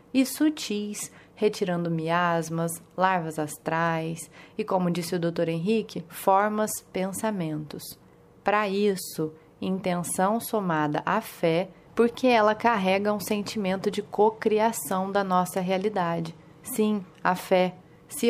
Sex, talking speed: female, 110 wpm